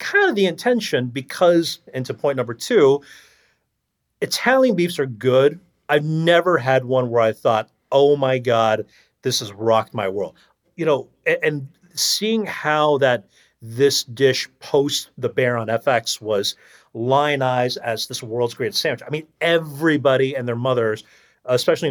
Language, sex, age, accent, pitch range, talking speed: English, male, 40-59, American, 120-160 Hz, 155 wpm